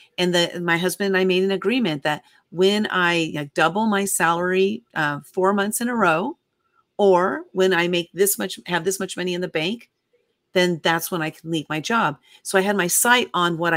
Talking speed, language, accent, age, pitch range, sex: 220 wpm, English, American, 40-59, 170-205 Hz, female